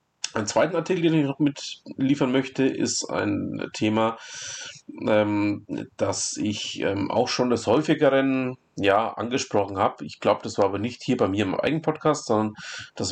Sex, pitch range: male, 105-140 Hz